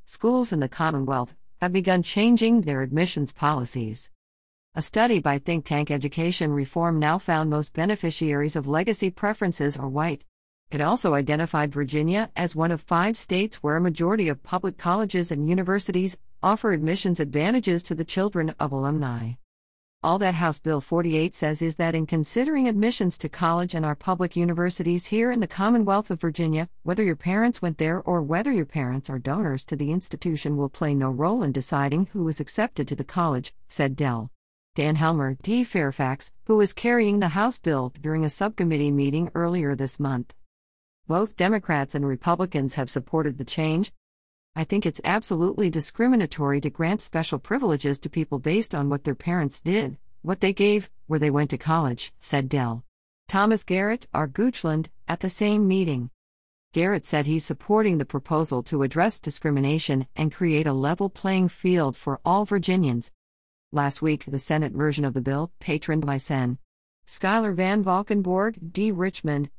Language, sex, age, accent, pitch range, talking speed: English, female, 50-69, American, 140-185 Hz, 170 wpm